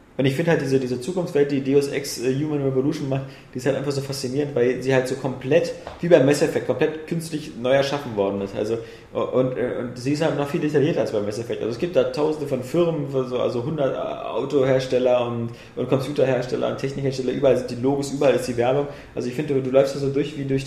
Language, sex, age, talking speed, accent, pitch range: German, male, 20-39, 240 wpm, German, 125-145 Hz